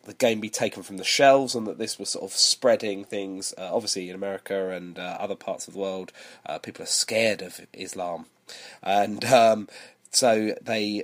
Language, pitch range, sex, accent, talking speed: English, 100-135 Hz, male, British, 195 wpm